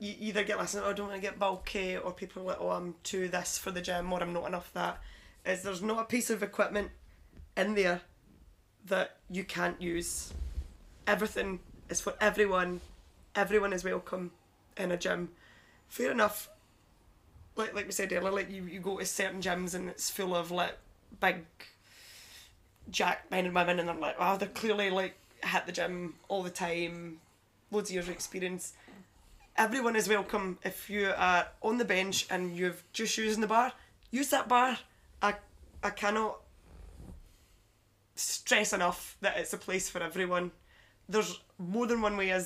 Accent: British